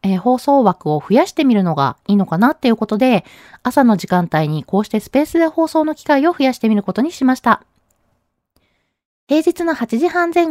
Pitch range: 190-285 Hz